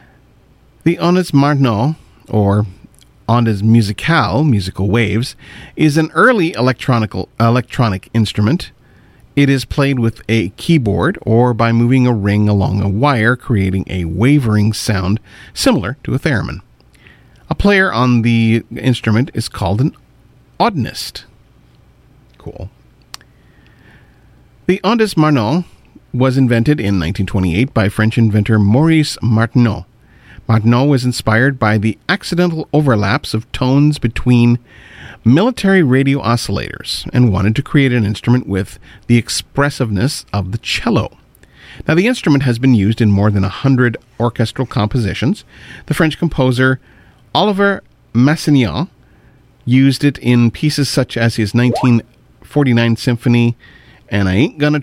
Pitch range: 110-140 Hz